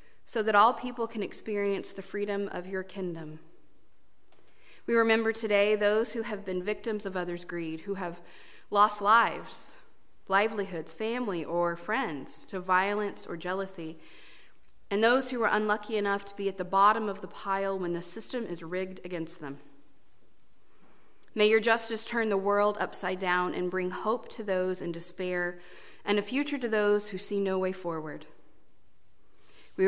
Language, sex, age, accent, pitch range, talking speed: English, female, 30-49, American, 180-220 Hz, 165 wpm